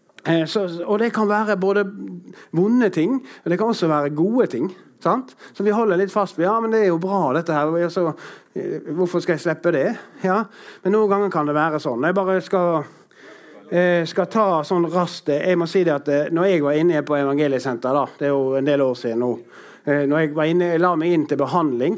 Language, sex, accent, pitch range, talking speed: English, male, Swedish, 145-185 Hz, 245 wpm